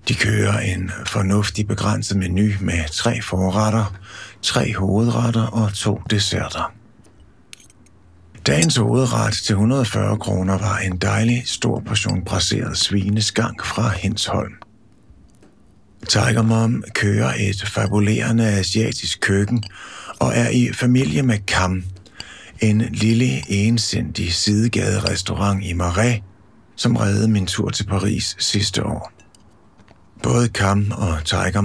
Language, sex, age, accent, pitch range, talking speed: Danish, male, 60-79, native, 100-115 Hz, 110 wpm